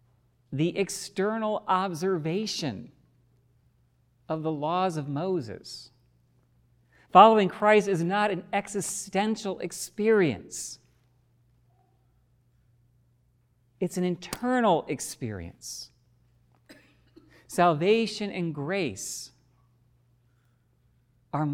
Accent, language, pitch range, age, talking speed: American, English, 120-185 Hz, 50-69, 65 wpm